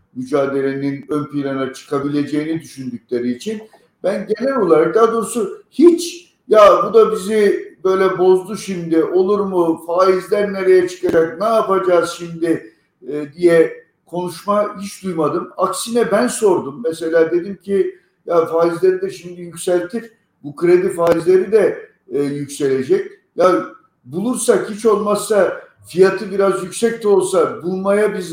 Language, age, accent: Turkish, 50-69, native